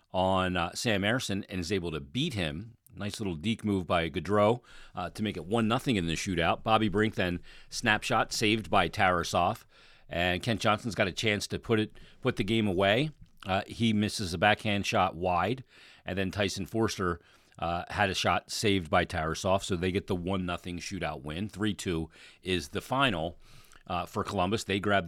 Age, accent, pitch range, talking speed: 40-59, American, 90-110 Hz, 195 wpm